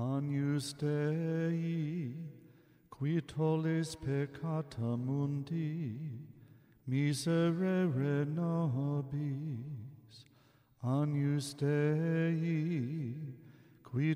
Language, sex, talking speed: Persian, male, 45 wpm